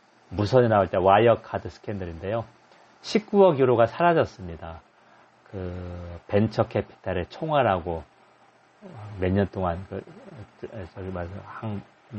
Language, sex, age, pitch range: Korean, male, 40-59, 95-115 Hz